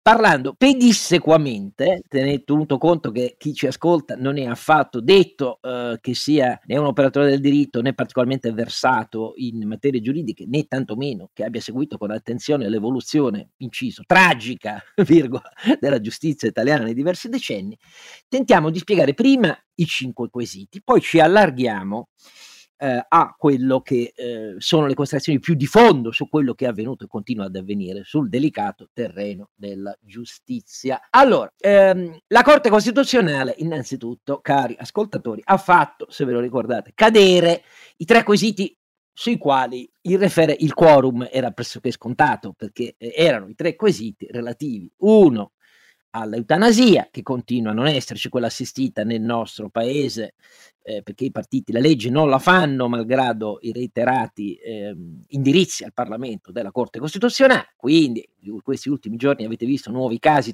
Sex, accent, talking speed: male, native, 145 wpm